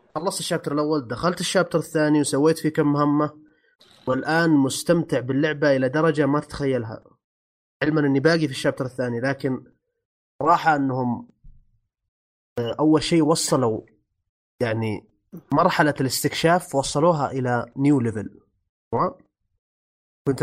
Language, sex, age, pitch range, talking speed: Arabic, male, 30-49, 125-160 Hz, 110 wpm